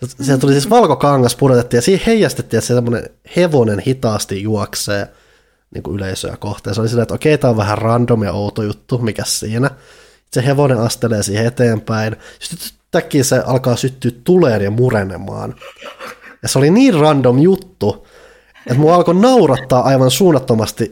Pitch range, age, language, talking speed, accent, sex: 110-135 Hz, 20-39, Finnish, 155 wpm, native, male